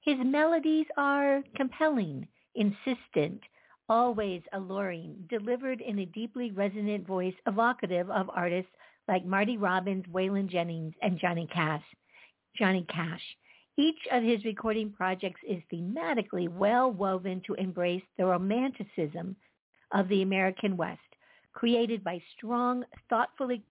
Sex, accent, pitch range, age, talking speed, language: female, American, 185-245 Hz, 60-79, 115 wpm, English